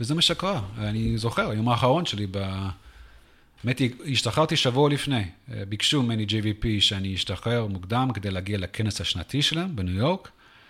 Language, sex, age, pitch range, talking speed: English, male, 30-49, 105-145 Hz, 145 wpm